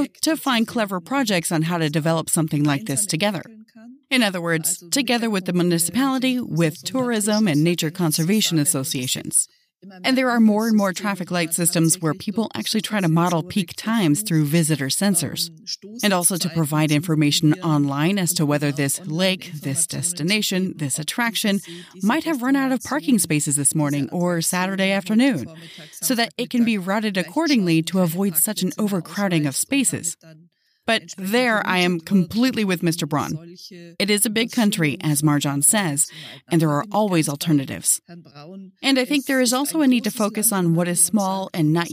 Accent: American